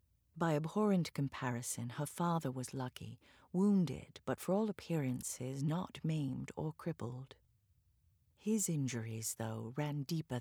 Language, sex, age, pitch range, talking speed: English, female, 40-59, 120-155 Hz, 120 wpm